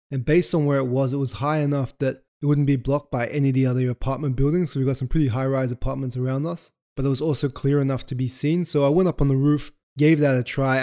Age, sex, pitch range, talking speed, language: 20-39, male, 130-150 Hz, 290 wpm, English